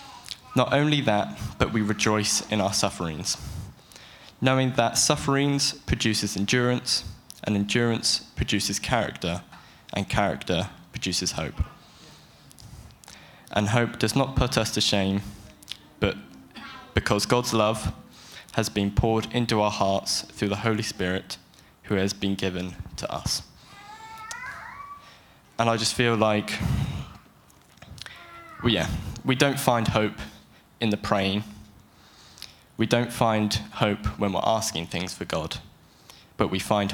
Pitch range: 100-120 Hz